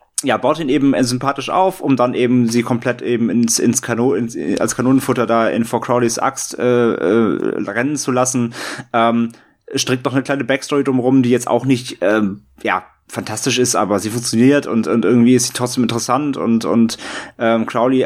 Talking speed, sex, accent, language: 190 wpm, male, German, German